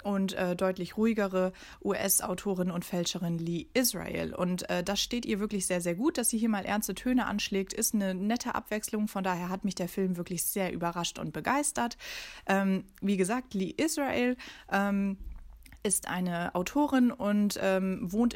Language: German